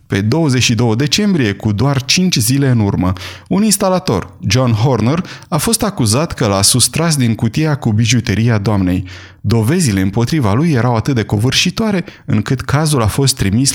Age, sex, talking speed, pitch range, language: 30-49, male, 155 wpm, 110-150 Hz, Romanian